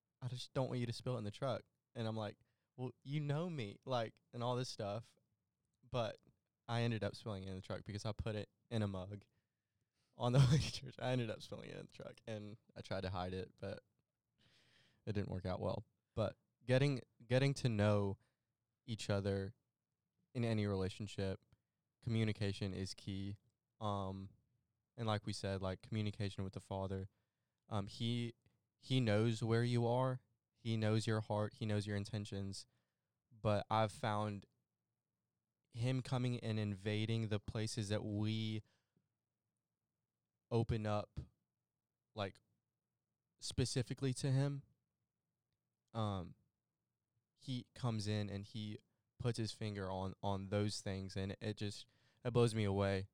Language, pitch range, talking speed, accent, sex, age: English, 100-120 Hz, 155 wpm, American, male, 20-39